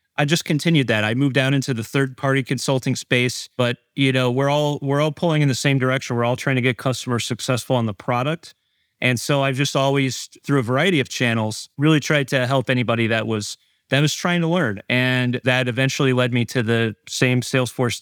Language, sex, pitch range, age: English, male, 120-140 Hz, 30-49